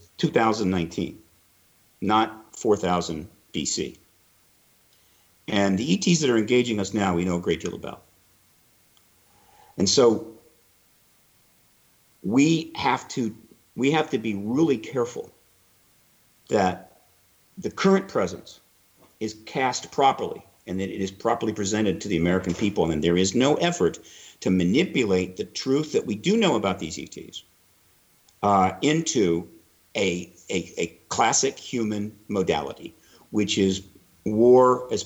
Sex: male